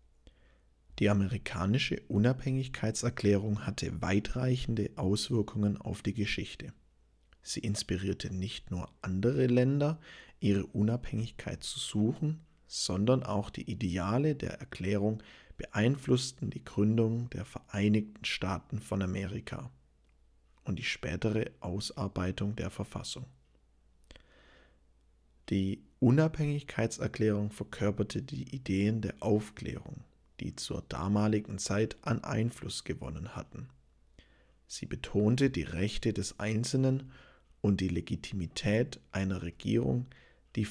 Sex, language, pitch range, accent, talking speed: male, English, 90-120 Hz, German, 95 wpm